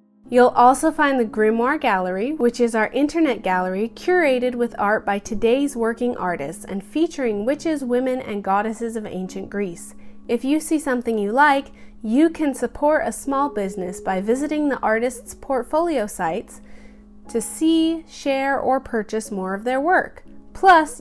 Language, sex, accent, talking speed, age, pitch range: English, female, American, 155 wpm, 30-49, 200-265 Hz